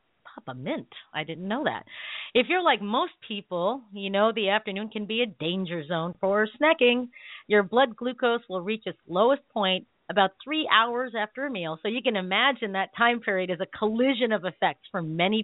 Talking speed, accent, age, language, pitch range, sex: 195 wpm, American, 40-59, English, 185-255 Hz, female